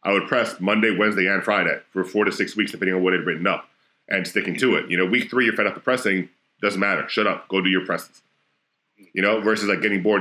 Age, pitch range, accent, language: 40-59, 90-105 Hz, American, English